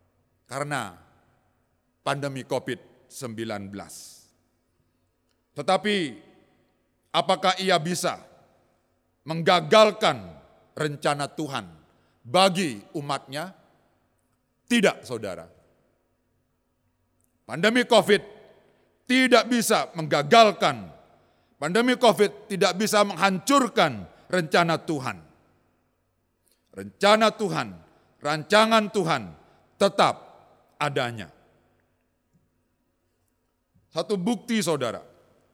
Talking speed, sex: 60 wpm, male